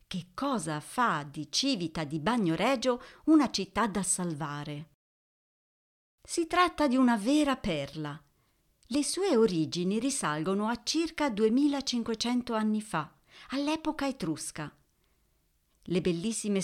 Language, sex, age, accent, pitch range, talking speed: Italian, female, 50-69, native, 180-260 Hz, 110 wpm